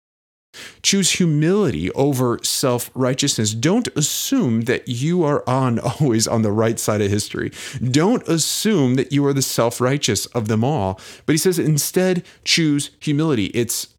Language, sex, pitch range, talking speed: English, male, 95-130 Hz, 145 wpm